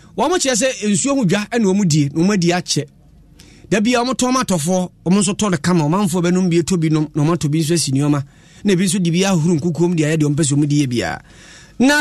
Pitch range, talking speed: 165-240 Hz, 175 wpm